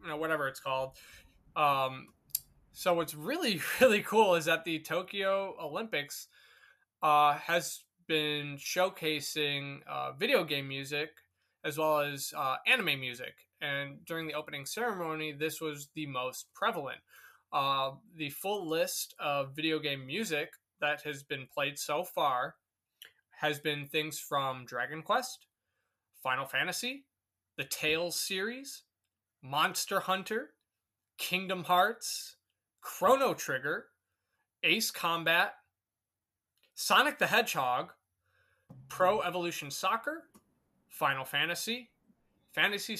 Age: 20-39